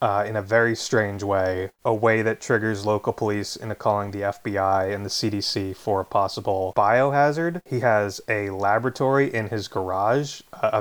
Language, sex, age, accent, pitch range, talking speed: English, male, 20-39, American, 105-125 Hz, 170 wpm